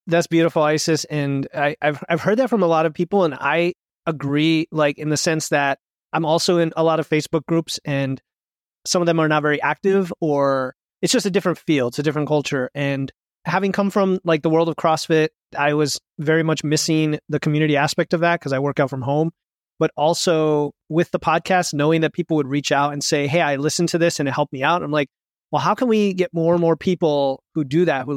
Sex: male